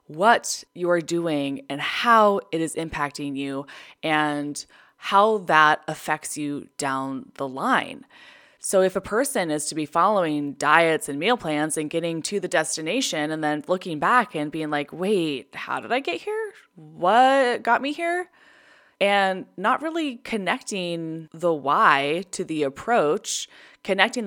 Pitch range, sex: 155-225 Hz, female